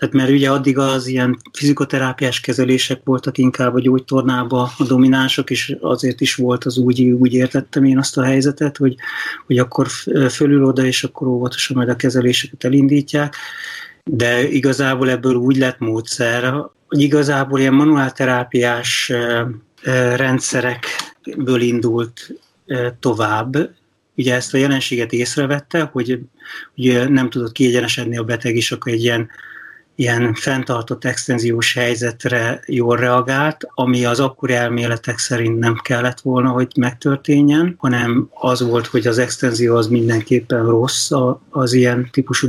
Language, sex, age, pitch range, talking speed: Hungarian, male, 30-49, 125-135 Hz, 135 wpm